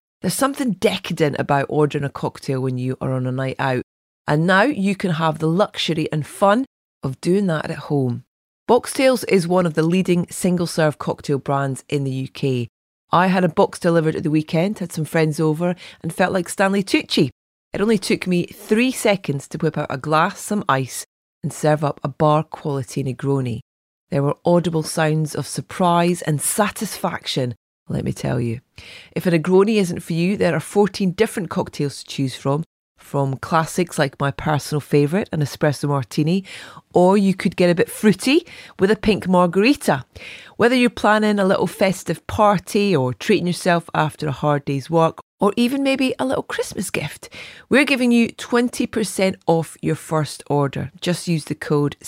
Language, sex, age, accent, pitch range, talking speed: English, female, 30-49, British, 145-195 Hz, 180 wpm